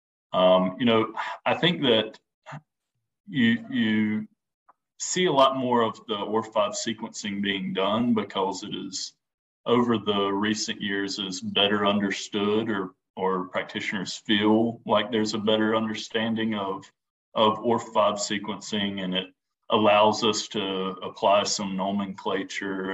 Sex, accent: male, American